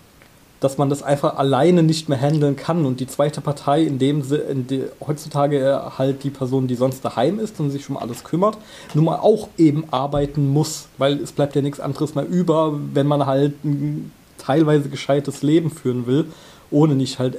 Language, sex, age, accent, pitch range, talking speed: German, male, 20-39, German, 135-160 Hz, 190 wpm